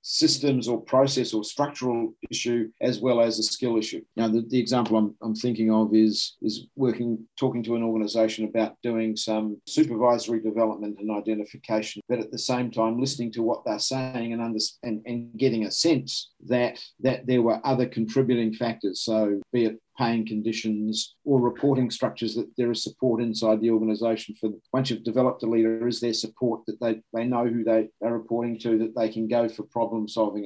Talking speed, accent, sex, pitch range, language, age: 195 wpm, Australian, male, 110-125 Hz, English, 50-69